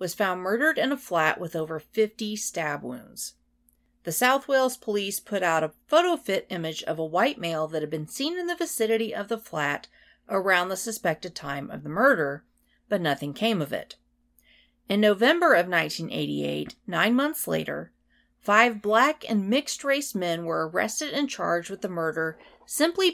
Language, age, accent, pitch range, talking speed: English, 40-59, American, 160-240 Hz, 175 wpm